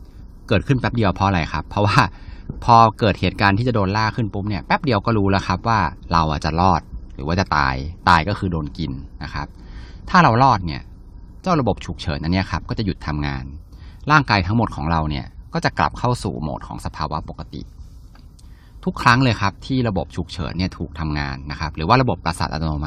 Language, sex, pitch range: Thai, male, 80-105 Hz